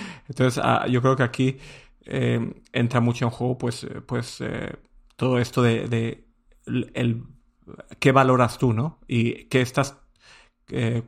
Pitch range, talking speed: 115-130 Hz, 145 wpm